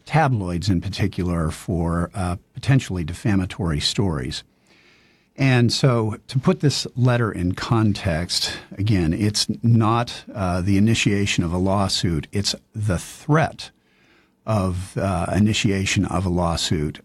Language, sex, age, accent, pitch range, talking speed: English, male, 50-69, American, 90-115 Hz, 120 wpm